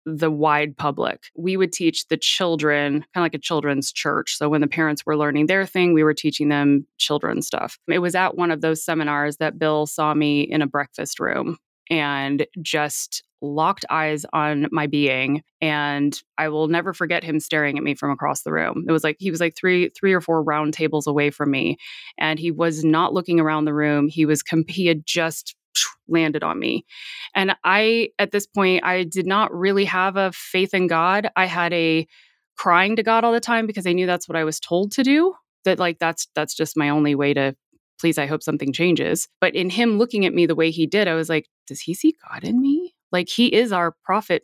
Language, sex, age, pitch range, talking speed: English, female, 20-39, 155-190 Hz, 225 wpm